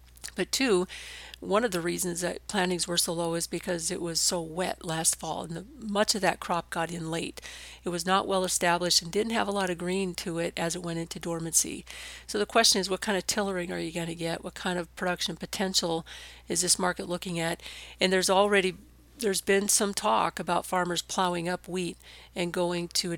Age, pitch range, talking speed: 50-69, 170-190 Hz, 220 wpm